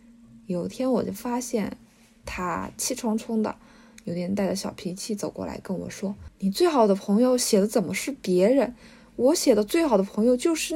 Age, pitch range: 20-39, 190-220 Hz